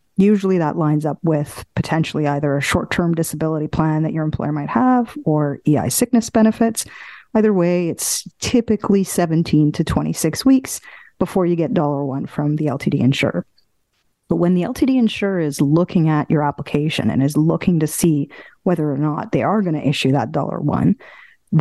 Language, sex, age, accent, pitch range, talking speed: English, female, 40-59, American, 150-195 Hz, 170 wpm